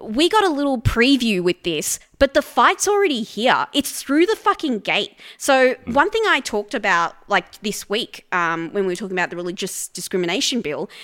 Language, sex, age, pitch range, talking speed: English, female, 20-39, 210-330 Hz, 195 wpm